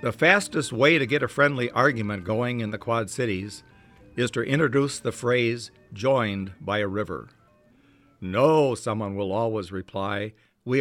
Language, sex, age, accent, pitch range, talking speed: English, male, 60-79, American, 105-135 Hz, 155 wpm